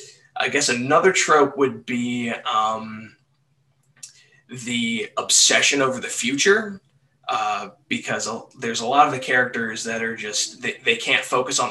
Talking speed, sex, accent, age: 145 wpm, male, American, 20-39